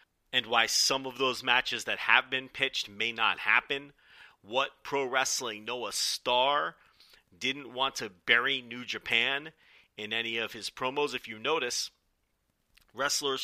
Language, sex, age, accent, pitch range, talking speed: English, male, 30-49, American, 105-130 Hz, 145 wpm